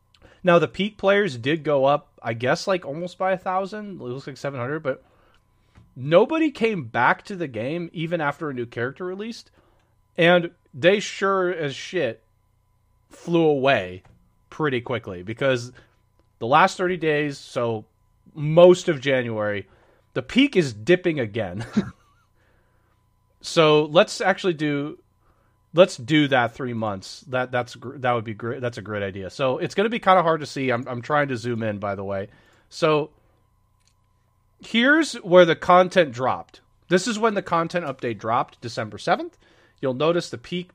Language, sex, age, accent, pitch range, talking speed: English, male, 30-49, American, 110-175 Hz, 165 wpm